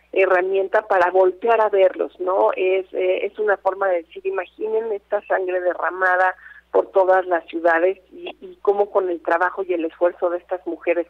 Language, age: Spanish, 40-59